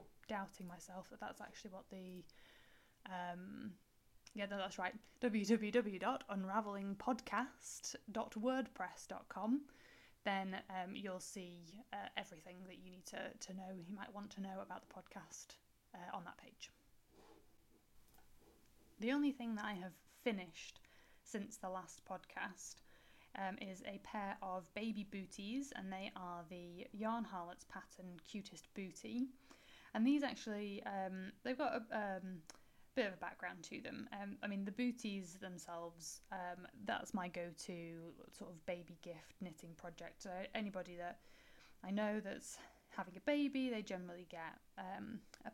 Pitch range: 185-220 Hz